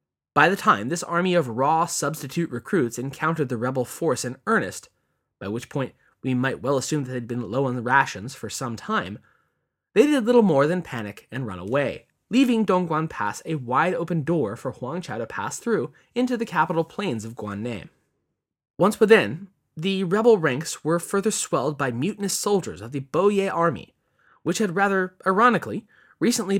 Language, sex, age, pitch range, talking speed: English, male, 20-39, 125-185 Hz, 180 wpm